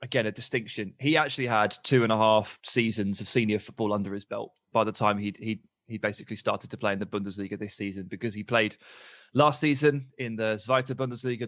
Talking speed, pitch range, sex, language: 215 wpm, 110-135 Hz, male, English